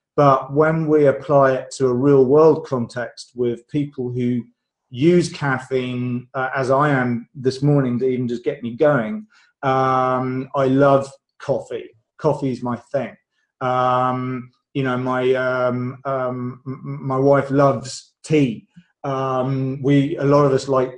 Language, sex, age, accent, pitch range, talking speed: English, male, 30-49, British, 130-150 Hz, 150 wpm